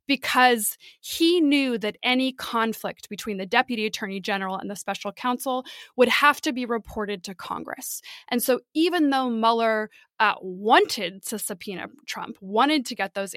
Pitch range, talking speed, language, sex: 215-285 Hz, 160 wpm, English, female